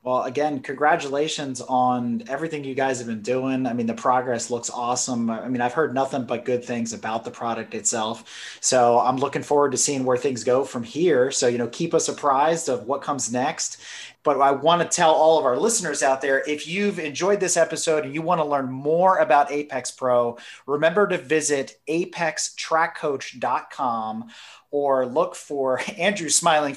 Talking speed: 185 wpm